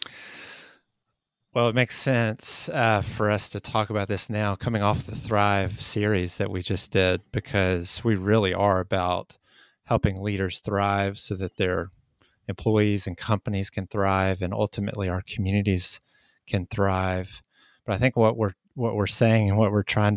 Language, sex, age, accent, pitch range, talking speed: English, male, 30-49, American, 100-110 Hz, 165 wpm